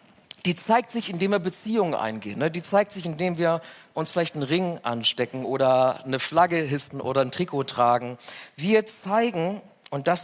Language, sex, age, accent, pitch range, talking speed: German, male, 40-59, German, 145-185 Hz, 170 wpm